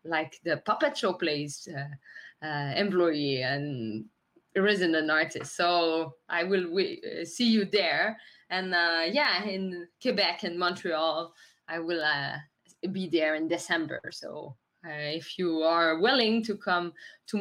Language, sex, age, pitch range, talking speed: English, female, 20-39, 170-215 Hz, 140 wpm